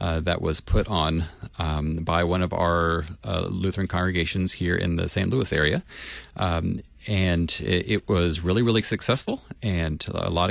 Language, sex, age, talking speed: English, male, 30-49, 170 wpm